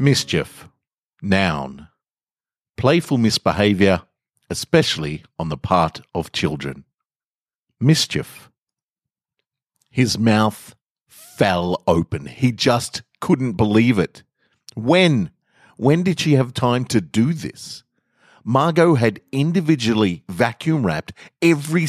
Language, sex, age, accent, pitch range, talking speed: English, male, 50-69, Australian, 100-140 Hz, 95 wpm